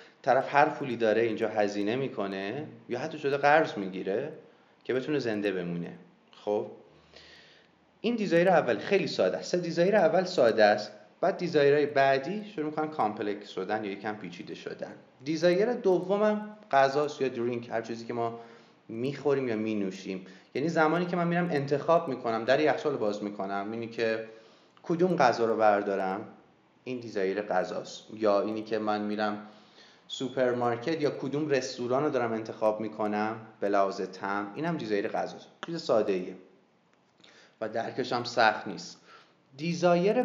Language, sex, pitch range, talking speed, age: Persian, male, 105-150 Hz, 150 wpm, 30-49